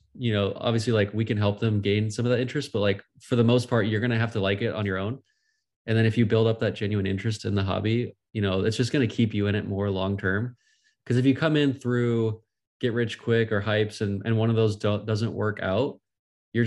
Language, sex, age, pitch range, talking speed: English, male, 20-39, 100-115 Hz, 265 wpm